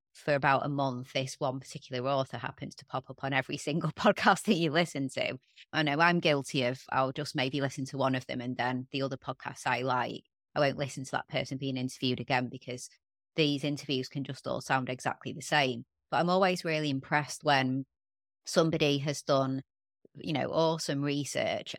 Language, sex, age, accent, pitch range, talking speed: English, female, 30-49, British, 135-150 Hz, 200 wpm